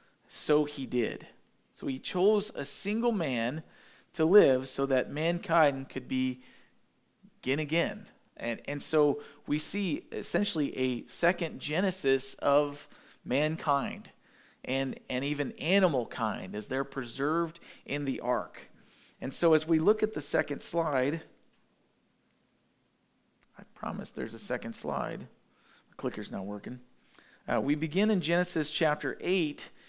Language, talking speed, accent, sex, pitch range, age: English, 130 wpm, American, male, 145-190 Hz, 40-59